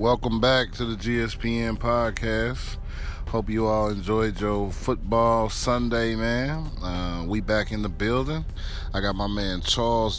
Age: 30-49